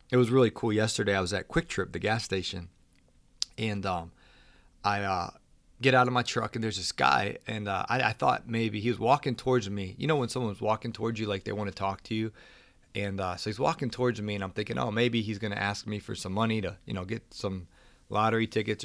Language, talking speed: English, 250 wpm